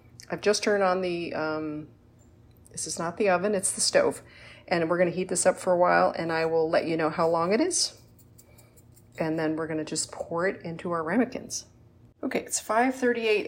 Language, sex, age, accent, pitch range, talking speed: English, female, 40-59, American, 165-215 Hz, 205 wpm